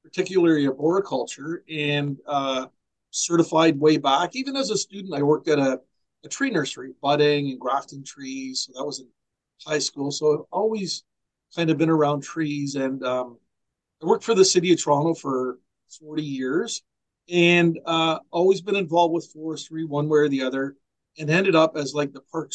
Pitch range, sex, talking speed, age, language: 140-175 Hz, male, 180 wpm, 50-69, English